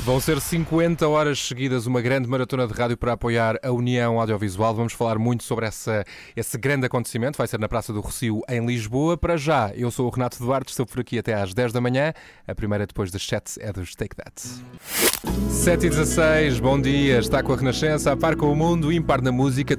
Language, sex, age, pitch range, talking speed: Portuguese, male, 20-39, 110-135 Hz, 220 wpm